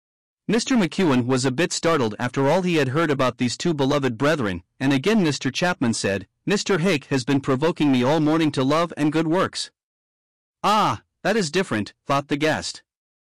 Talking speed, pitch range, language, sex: 185 wpm, 130-170 Hz, English, male